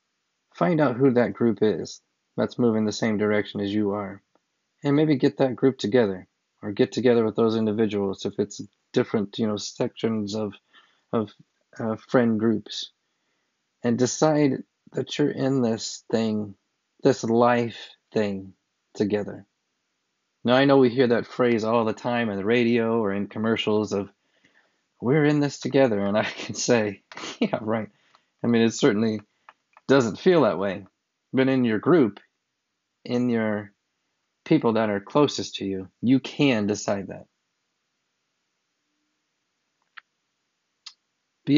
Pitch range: 105-125 Hz